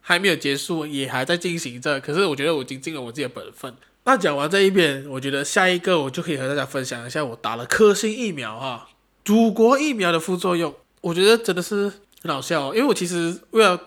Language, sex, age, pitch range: Chinese, male, 20-39, 135-185 Hz